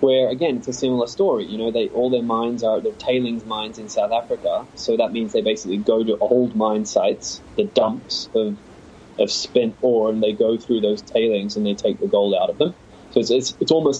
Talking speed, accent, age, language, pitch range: 225 wpm, Australian, 10-29, English, 110-135 Hz